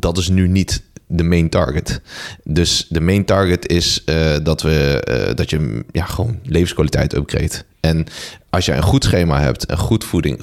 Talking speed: 185 wpm